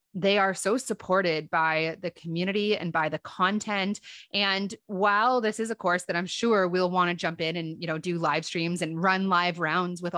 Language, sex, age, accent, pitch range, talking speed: English, female, 30-49, American, 170-205 Hz, 210 wpm